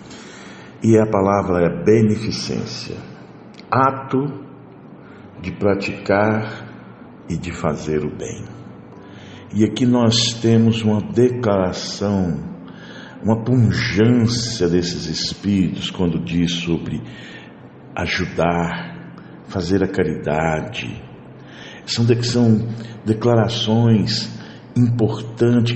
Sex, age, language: male, 60-79, Portuguese